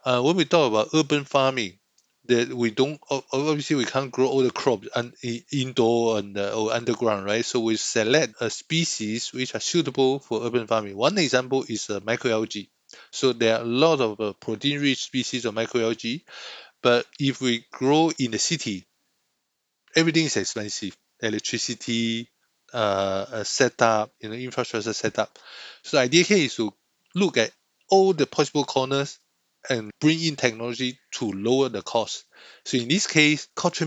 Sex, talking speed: male, 165 wpm